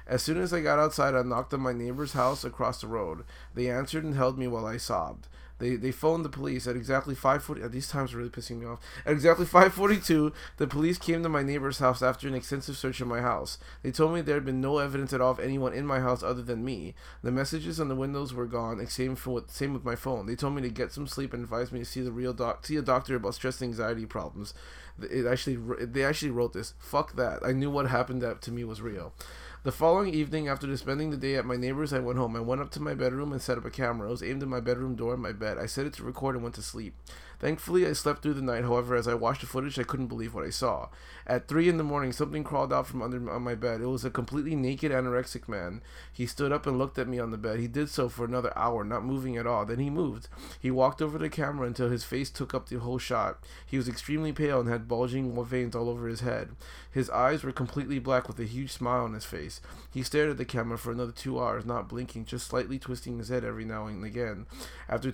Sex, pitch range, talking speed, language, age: male, 120-140 Hz, 270 wpm, English, 20-39